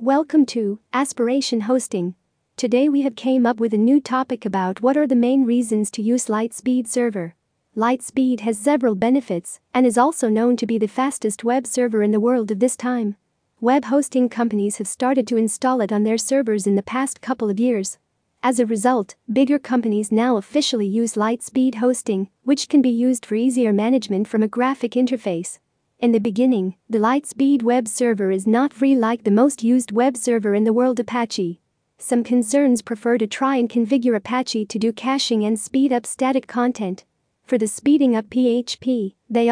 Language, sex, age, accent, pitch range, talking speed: English, female, 40-59, American, 215-255 Hz, 185 wpm